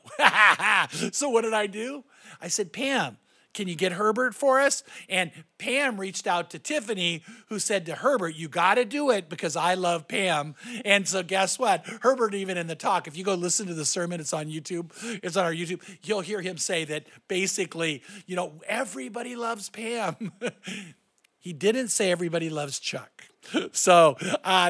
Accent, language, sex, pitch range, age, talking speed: American, English, male, 170-235 Hz, 50-69, 180 wpm